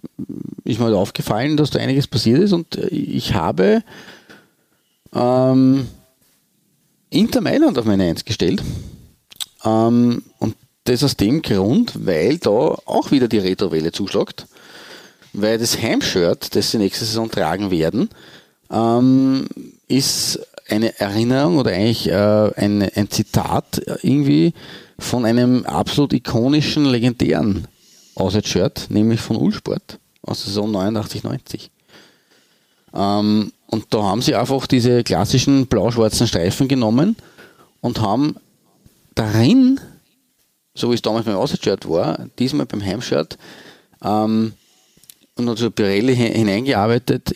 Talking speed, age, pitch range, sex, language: 120 wpm, 40-59, 105-130 Hz, male, German